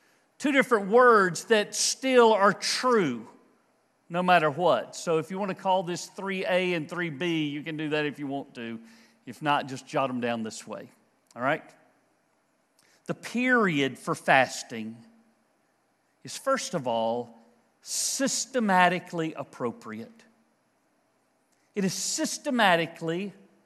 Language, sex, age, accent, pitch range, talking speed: English, male, 50-69, American, 180-255 Hz, 130 wpm